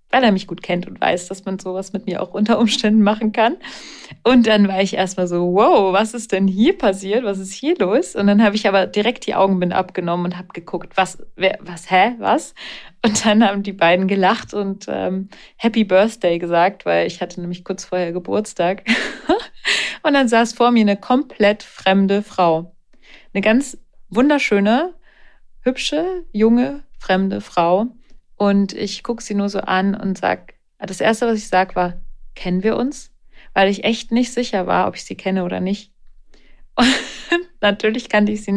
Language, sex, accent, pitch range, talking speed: German, female, German, 185-220 Hz, 185 wpm